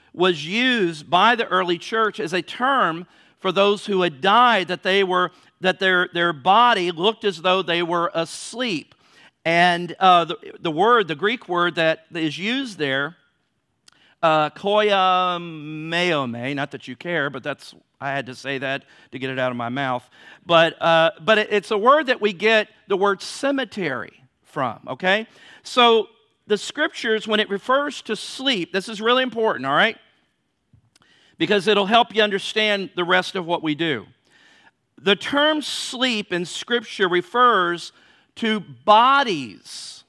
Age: 50-69